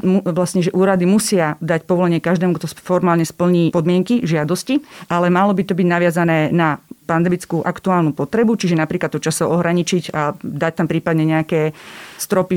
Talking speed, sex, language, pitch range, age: 160 wpm, female, Slovak, 160-190 Hz, 40-59